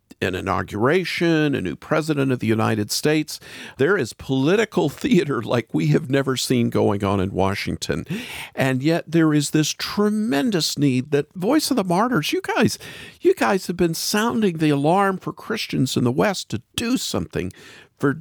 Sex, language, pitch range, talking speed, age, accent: male, English, 110-155 Hz, 170 wpm, 50-69, American